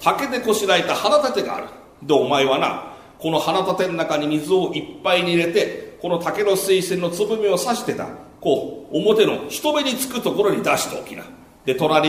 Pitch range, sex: 180-275 Hz, male